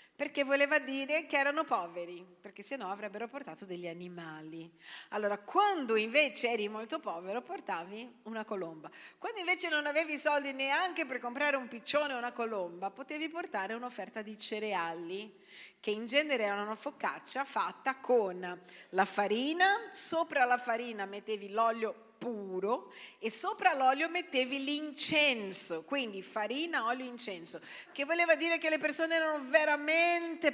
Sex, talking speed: female, 140 wpm